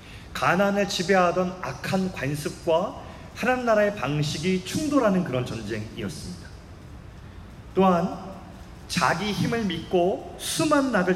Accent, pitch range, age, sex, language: native, 125-190 Hz, 30-49, male, Korean